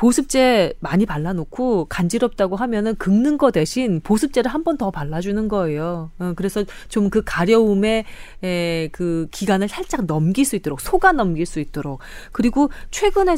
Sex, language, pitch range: female, Korean, 175-255 Hz